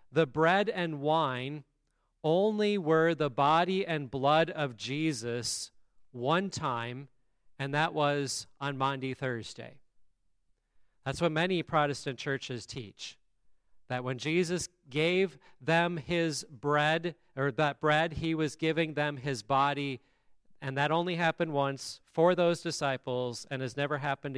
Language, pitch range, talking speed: English, 135-165 Hz, 135 wpm